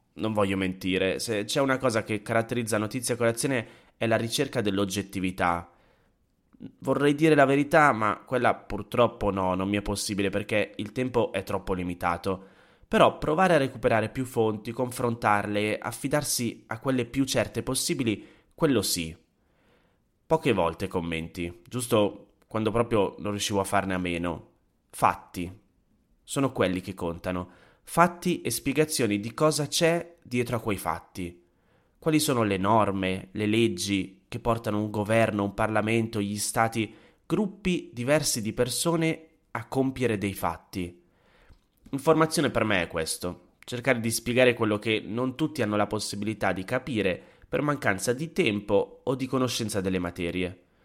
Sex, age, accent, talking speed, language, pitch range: male, 20-39, native, 145 wpm, Italian, 95-130 Hz